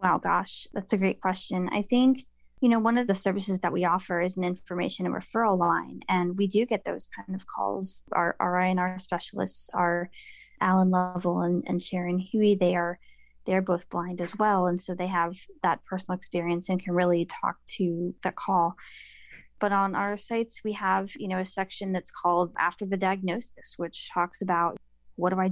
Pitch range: 175-195 Hz